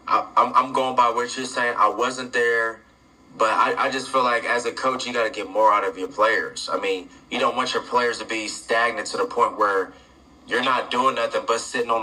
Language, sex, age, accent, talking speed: English, male, 20-39, American, 245 wpm